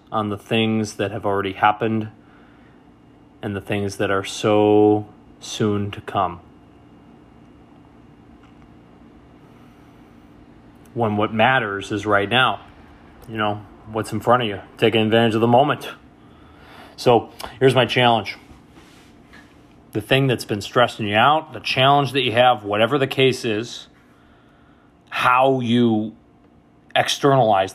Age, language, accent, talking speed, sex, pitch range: 30-49, English, American, 125 wpm, male, 100-120 Hz